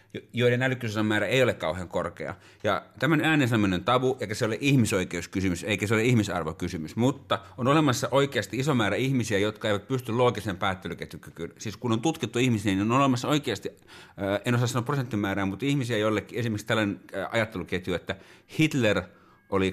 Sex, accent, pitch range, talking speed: male, native, 100-135 Hz, 160 wpm